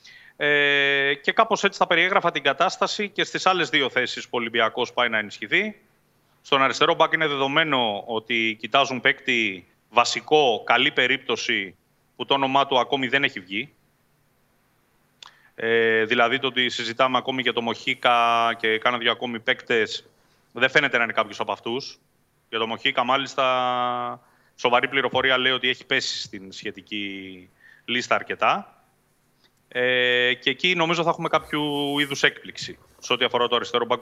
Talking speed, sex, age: 155 wpm, male, 30-49